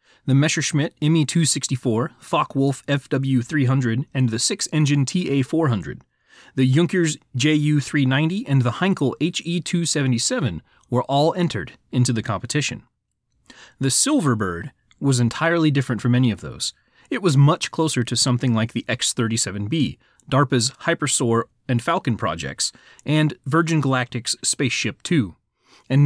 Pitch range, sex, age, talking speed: 120-155 Hz, male, 30-49, 120 wpm